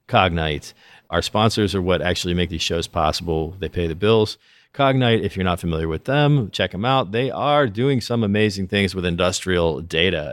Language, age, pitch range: English, 40-59, 80-100 Hz